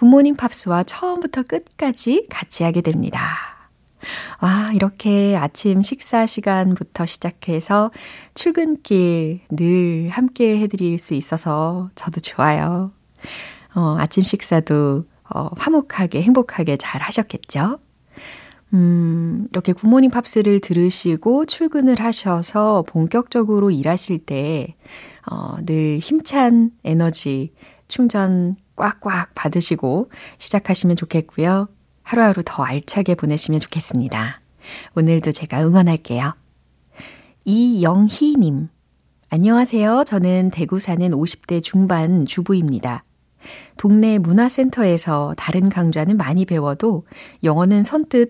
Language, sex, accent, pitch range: Korean, female, native, 160-215 Hz